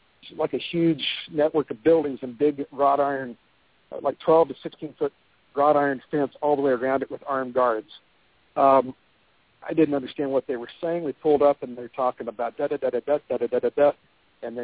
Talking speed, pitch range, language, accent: 185 wpm, 125-145 Hz, English, American